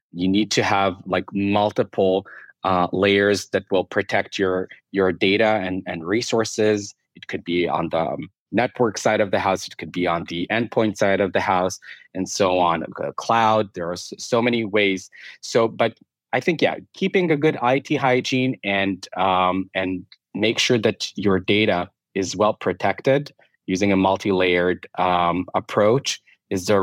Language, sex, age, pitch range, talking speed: English, male, 20-39, 90-110 Hz, 170 wpm